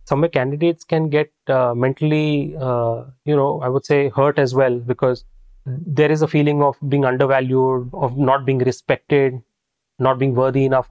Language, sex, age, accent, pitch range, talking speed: English, male, 20-39, Indian, 125-150 Hz, 170 wpm